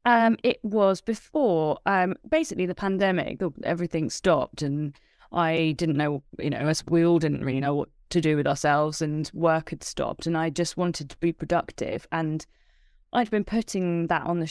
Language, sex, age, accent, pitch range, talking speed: English, female, 20-39, British, 160-185 Hz, 185 wpm